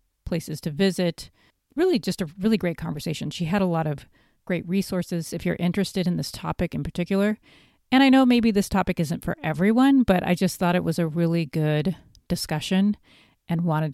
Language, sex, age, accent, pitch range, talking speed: English, female, 30-49, American, 155-185 Hz, 195 wpm